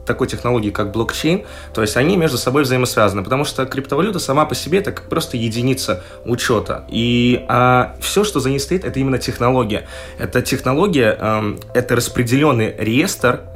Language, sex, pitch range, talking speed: Russian, male, 110-135 Hz, 165 wpm